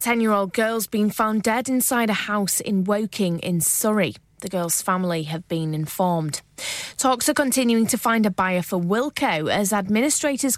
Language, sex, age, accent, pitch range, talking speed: English, female, 20-39, British, 185-245 Hz, 165 wpm